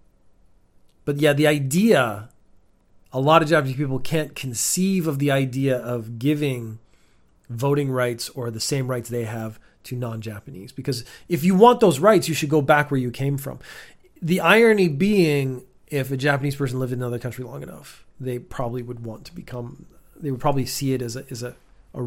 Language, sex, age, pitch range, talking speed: English, male, 30-49, 115-150 Hz, 190 wpm